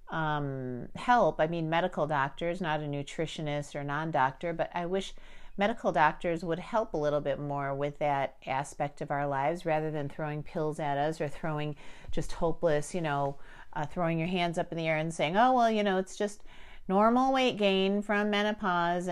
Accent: American